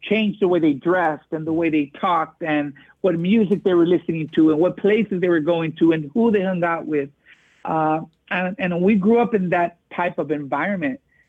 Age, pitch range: 50-69, 160-215 Hz